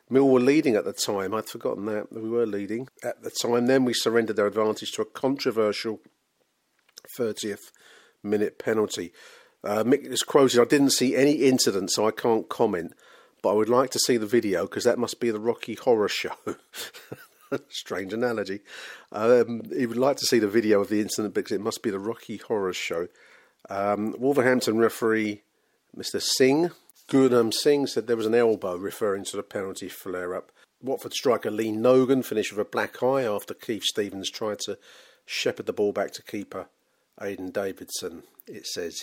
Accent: British